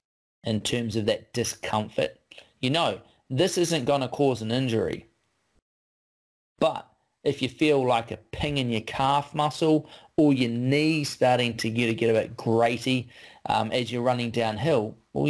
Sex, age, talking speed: male, 30-49, 155 wpm